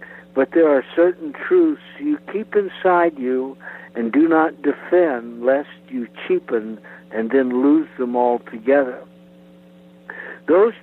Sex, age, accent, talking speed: male, 60-79, American, 125 wpm